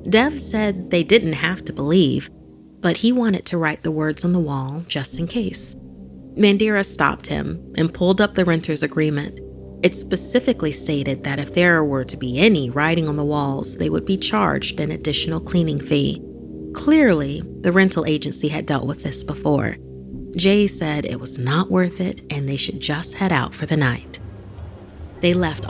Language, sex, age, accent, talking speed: English, female, 30-49, American, 180 wpm